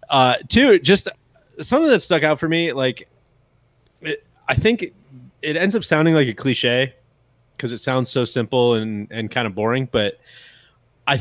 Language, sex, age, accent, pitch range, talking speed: English, male, 30-49, American, 120-150 Hz, 175 wpm